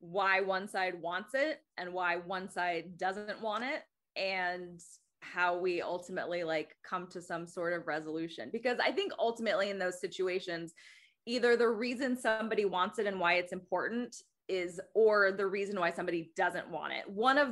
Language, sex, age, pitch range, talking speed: English, female, 20-39, 180-220 Hz, 175 wpm